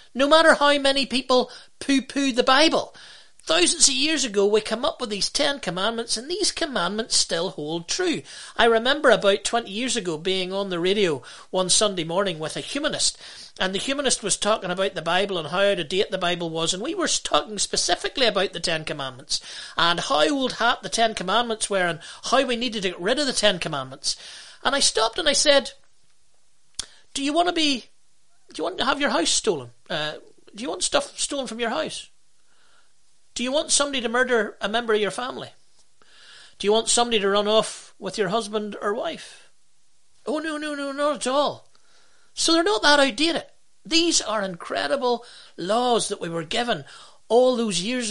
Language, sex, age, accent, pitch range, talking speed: English, male, 40-59, British, 200-280 Hz, 200 wpm